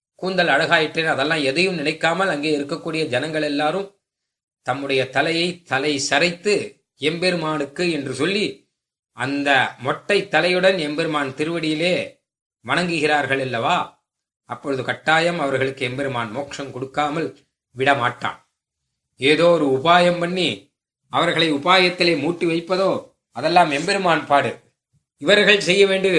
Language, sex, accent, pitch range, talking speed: Tamil, male, native, 140-175 Hz, 100 wpm